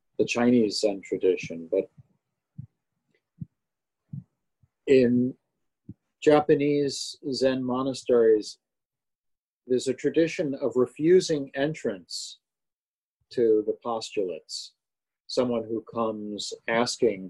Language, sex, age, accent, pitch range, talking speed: English, male, 40-59, American, 110-145 Hz, 75 wpm